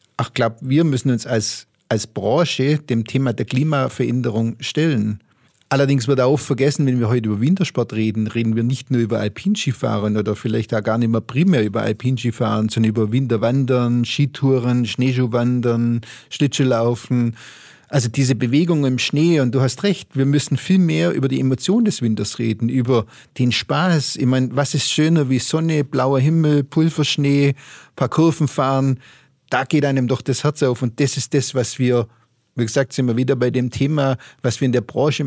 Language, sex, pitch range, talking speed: German, male, 125-150 Hz, 180 wpm